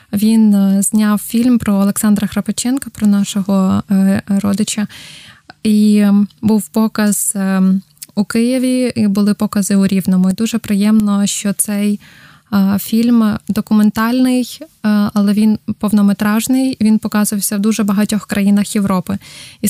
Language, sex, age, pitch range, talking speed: Ukrainian, female, 20-39, 195-215 Hz, 115 wpm